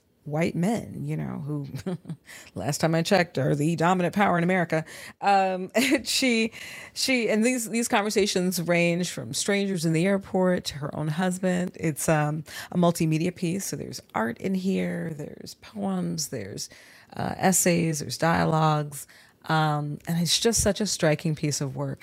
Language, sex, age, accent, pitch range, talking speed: English, female, 40-59, American, 150-180 Hz, 165 wpm